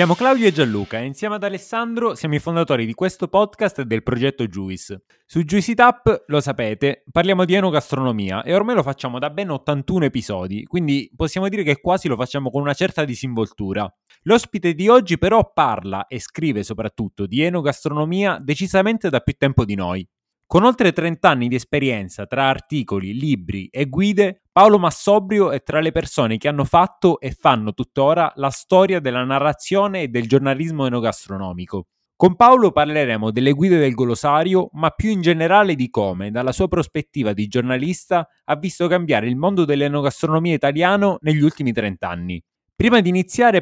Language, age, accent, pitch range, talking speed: Italian, 20-39, native, 120-180 Hz, 170 wpm